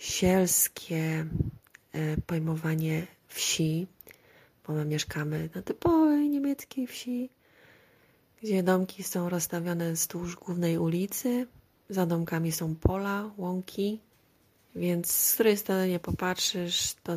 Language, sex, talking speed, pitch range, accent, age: Polish, female, 100 wpm, 155-180 Hz, native, 30-49